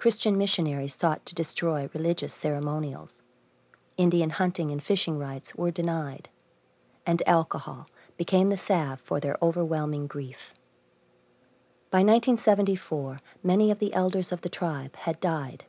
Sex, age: female, 40-59